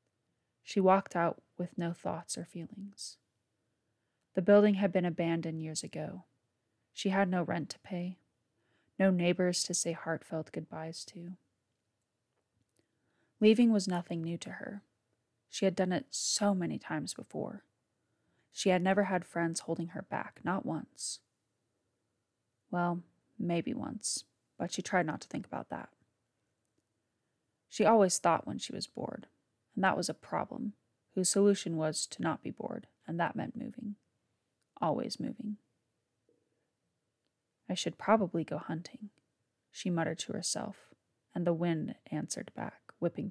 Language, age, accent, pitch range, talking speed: English, 20-39, American, 150-200 Hz, 145 wpm